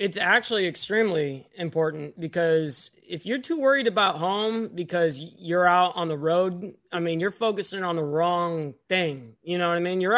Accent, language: American, English